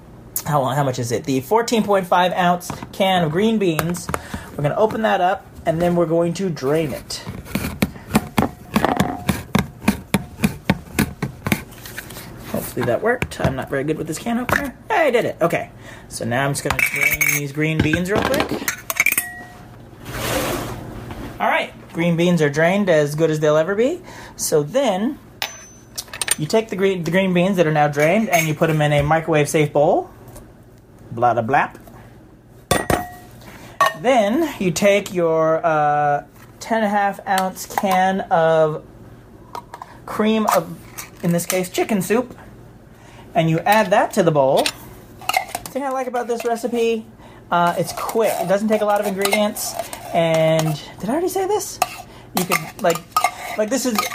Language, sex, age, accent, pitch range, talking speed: English, male, 30-49, American, 150-215 Hz, 160 wpm